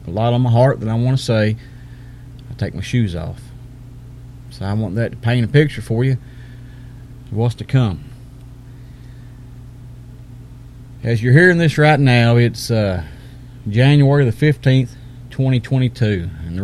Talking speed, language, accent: 150 wpm, English, American